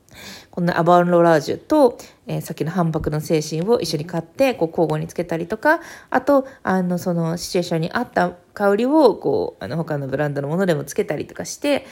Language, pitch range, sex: Japanese, 165-245 Hz, female